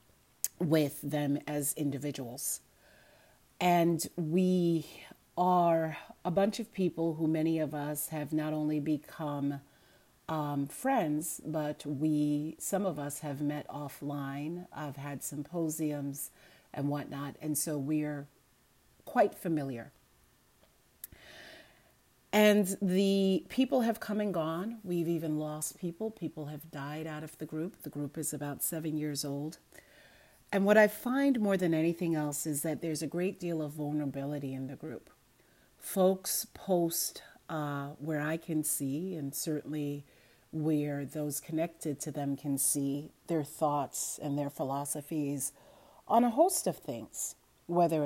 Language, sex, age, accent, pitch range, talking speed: English, female, 40-59, American, 145-165 Hz, 135 wpm